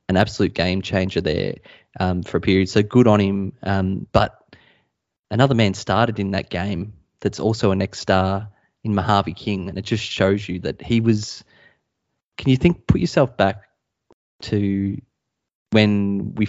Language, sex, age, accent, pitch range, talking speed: English, male, 20-39, Australian, 95-110 Hz, 165 wpm